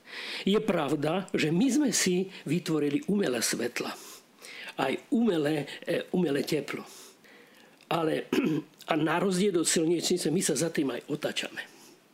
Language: Slovak